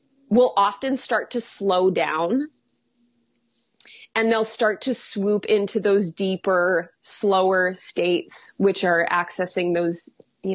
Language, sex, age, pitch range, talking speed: English, female, 20-39, 180-220 Hz, 120 wpm